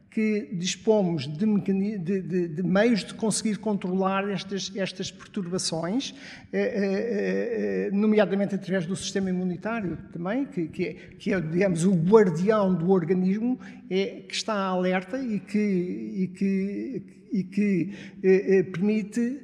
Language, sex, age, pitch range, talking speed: Portuguese, male, 60-79, 180-210 Hz, 135 wpm